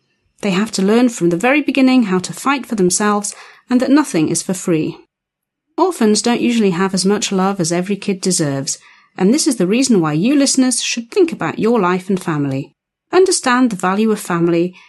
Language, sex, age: Slovak, female, 40-59